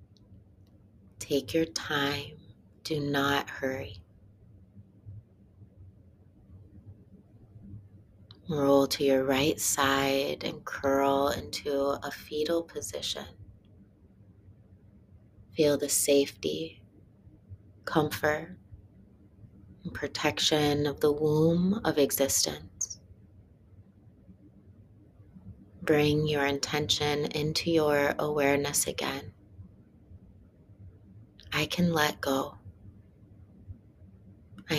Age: 30-49